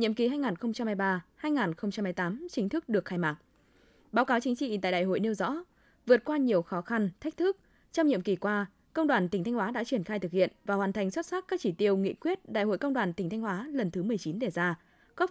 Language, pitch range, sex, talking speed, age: Vietnamese, 195-260 Hz, female, 240 wpm, 20-39